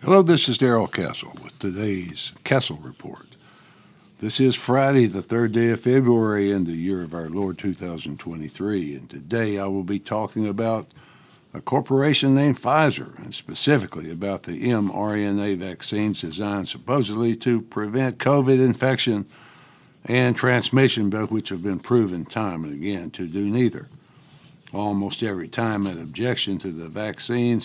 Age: 60-79